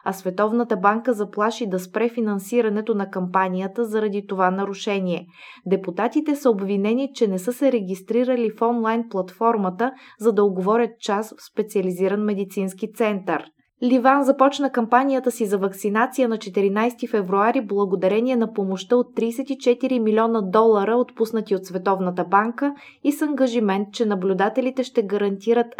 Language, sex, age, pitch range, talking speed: Bulgarian, female, 20-39, 195-245 Hz, 135 wpm